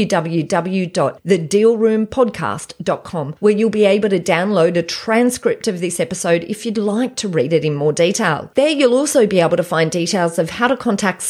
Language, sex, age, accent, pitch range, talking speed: English, female, 30-49, Australian, 175-235 Hz, 175 wpm